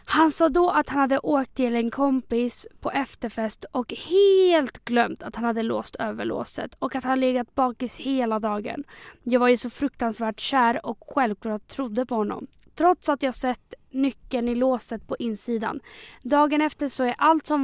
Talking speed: 185 wpm